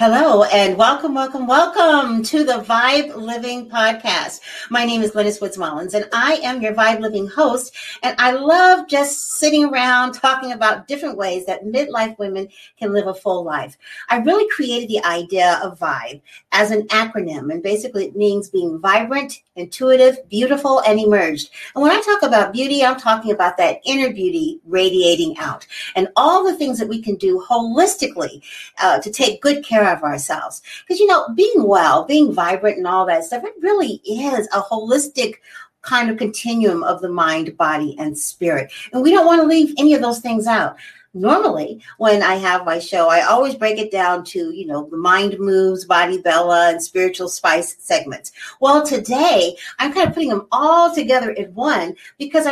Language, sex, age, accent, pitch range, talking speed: English, female, 50-69, American, 195-280 Hz, 185 wpm